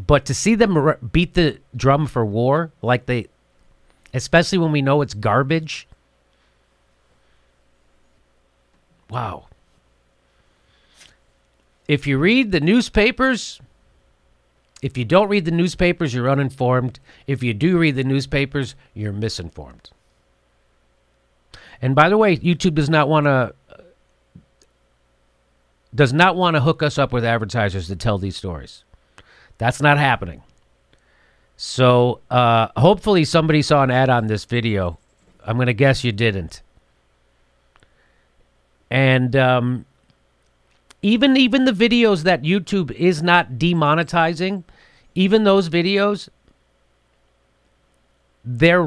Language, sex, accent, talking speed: English, male, American, 115 wpm